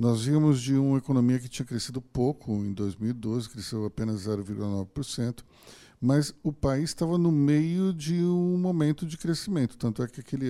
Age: 50-69